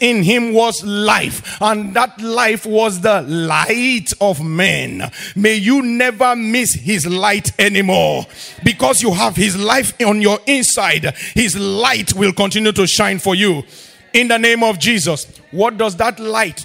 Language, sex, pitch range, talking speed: English, male, 195-245 Hz, 160 wpm